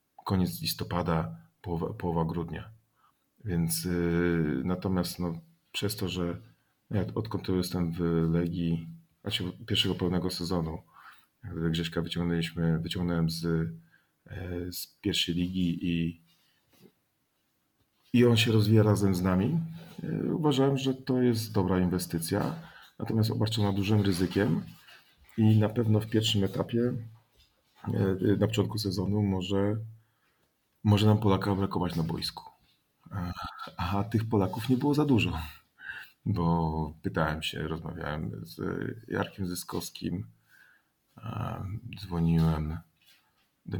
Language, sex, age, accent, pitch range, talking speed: Polish, male, 40-59, native, 85-110 Hz, 115 wpm